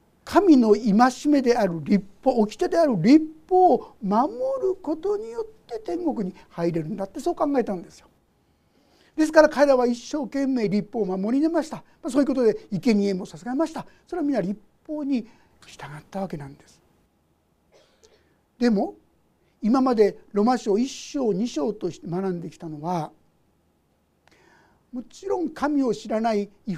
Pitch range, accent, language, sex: 190-295 Hz, native, Japanese, male